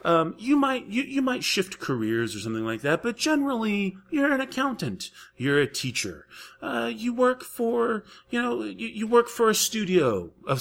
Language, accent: English, American